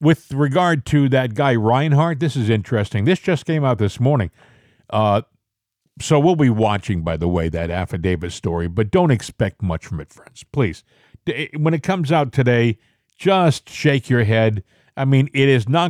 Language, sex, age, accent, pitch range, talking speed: English, male, 50-69, American, 115-160 Hz, 180 wpm